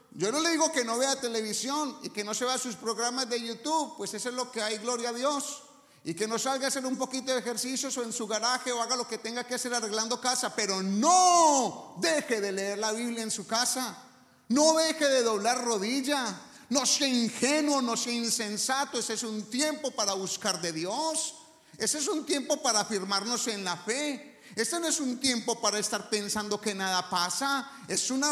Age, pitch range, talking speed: 40-59, 200-270 Hz, 210 wpm